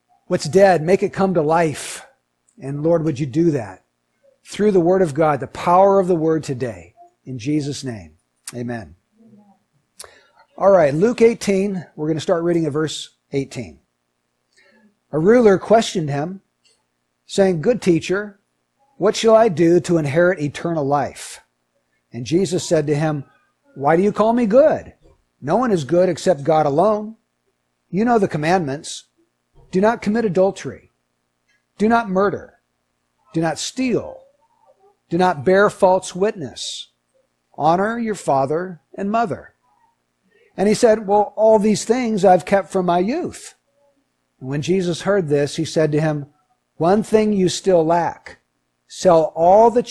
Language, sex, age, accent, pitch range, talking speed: English, male, 50-69, American, 140-210 Hz, 150 wpm